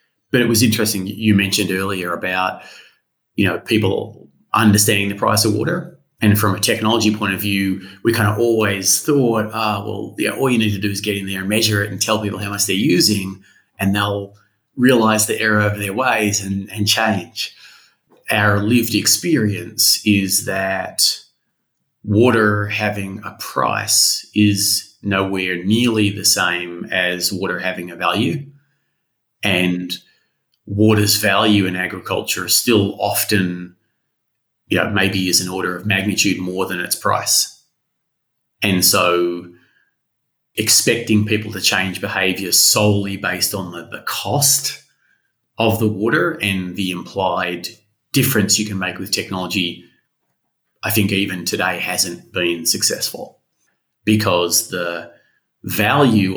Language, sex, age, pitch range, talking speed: English, male, 30-49, 95-110 Hz, 140 wpm